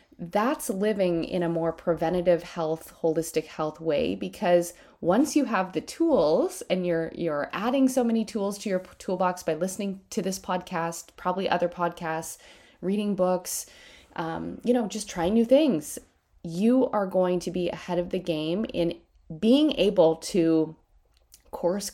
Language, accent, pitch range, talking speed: English, American, 170-225 Hz, 160 wpm